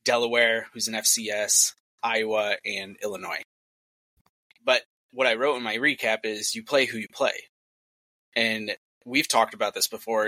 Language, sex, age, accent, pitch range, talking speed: English, male, 20-39, American, 110-145 Hz, 150 wpm